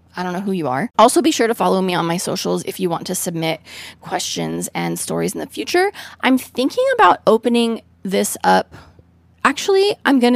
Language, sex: English, female